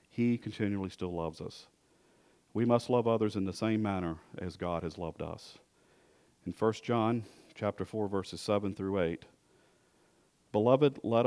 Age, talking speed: 50-69, 155 wpm